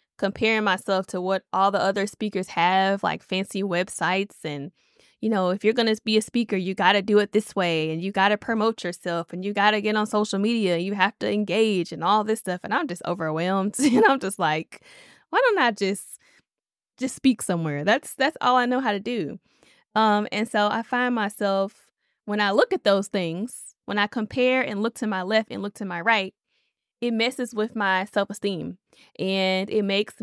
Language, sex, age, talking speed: English, female, 10-29, 210 wpm